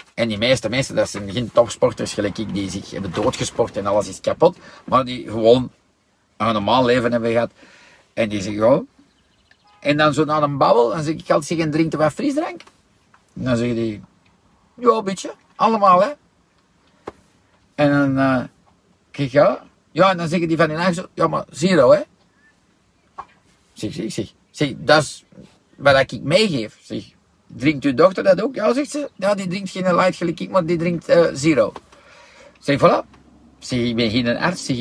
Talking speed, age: 190 wpm, 50-69